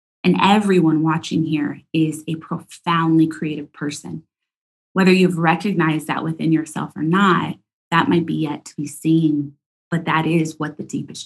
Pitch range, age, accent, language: 150-175 Hz, 20-39, American, English